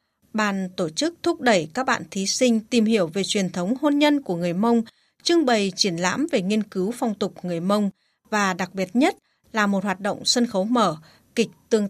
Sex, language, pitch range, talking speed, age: female, Vietnamese, 190-245 Hz, 215 wpm, 20-39